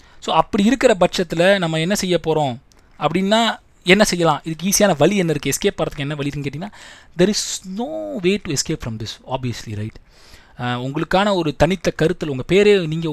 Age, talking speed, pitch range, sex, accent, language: 20-39, 175 wpm, 130-175 Hz, male, native, Tamil